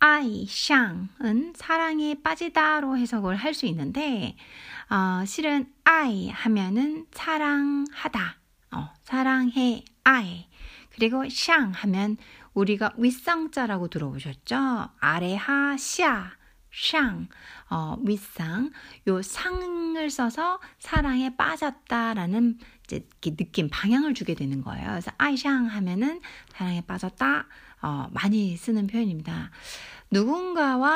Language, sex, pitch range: Korean, female, 200-280 Hz